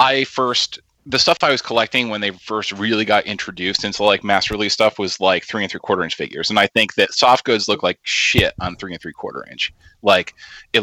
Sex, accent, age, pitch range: male, American, 30-49, 95-115 Hz